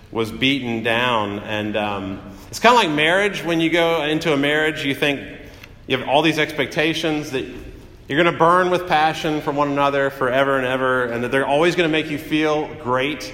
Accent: American